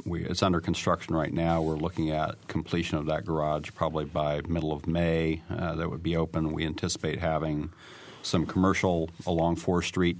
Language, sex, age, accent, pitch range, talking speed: English, male, 50-69, American, 80-90 Hz, 180 wpm